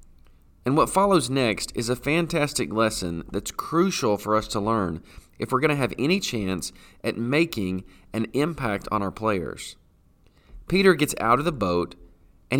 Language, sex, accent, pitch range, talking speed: English, male, American, 105-155 Hz, 165 wpm